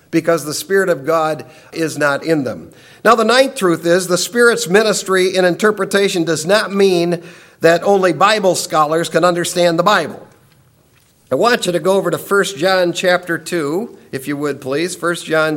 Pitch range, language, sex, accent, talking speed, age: 165-205 Hz, English, male, American, 180 wpm, 50-69